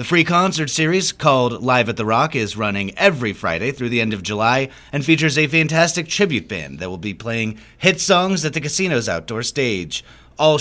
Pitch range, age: 110-165 Hz, 30-49